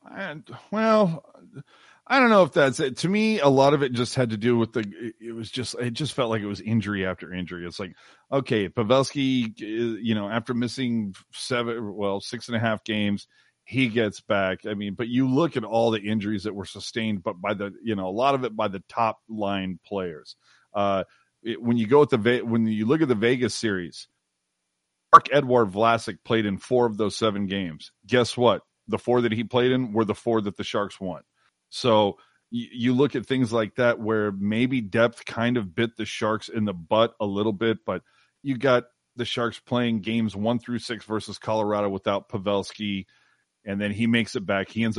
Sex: male